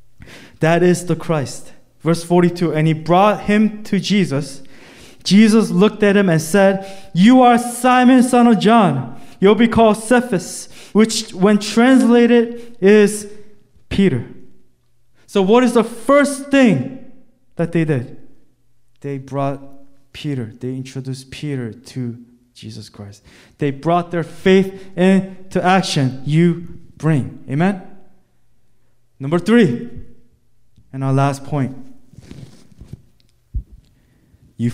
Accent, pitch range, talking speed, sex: Korean, 120-180 Hz, 115 wpm, male